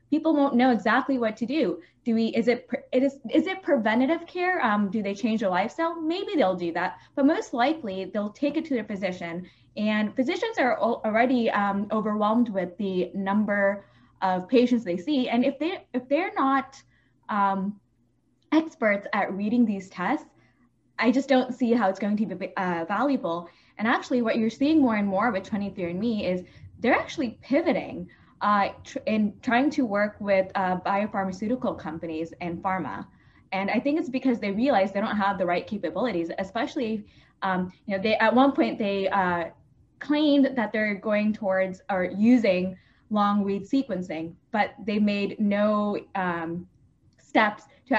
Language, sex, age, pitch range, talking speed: English, female, 10-29, 190-255 Hz, 175 wpm